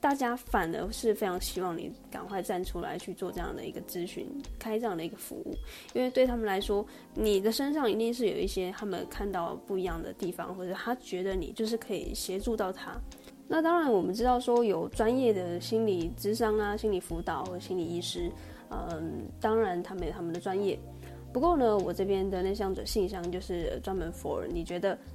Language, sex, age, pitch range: Chinese, female, 20-39, 180-225 Hz